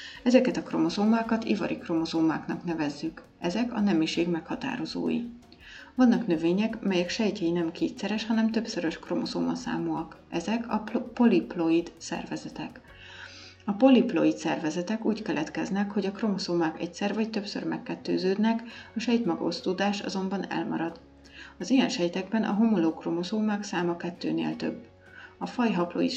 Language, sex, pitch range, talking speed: Hungarian, female, 165-225 Hz, 115 wpm